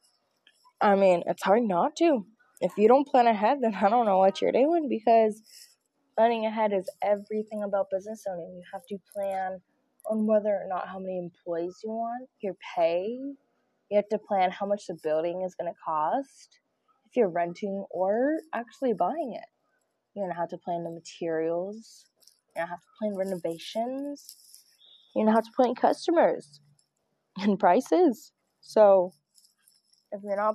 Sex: female